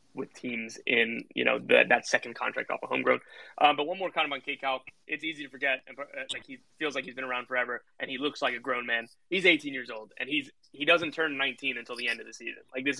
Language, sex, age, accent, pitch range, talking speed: English, male, 20-39, American, 130-160 Hz, 275 wpm